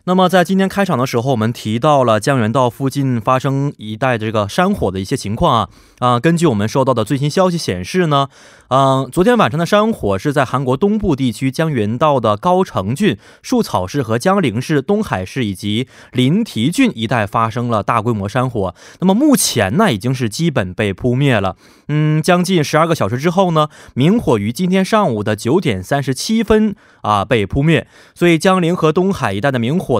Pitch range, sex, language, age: 115-175 Hz, male, Korean, 20-39